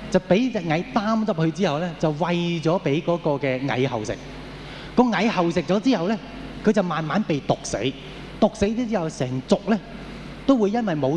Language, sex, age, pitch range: Chinese, male, 20-39, 140-190 Hz